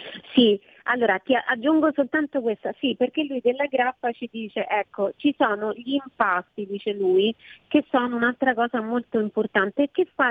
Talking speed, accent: 170 wpm, native